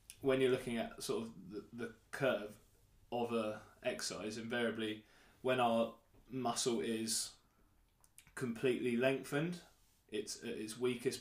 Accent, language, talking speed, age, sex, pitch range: British, English, 125 wpm, 20-39, male, 105-125 Hz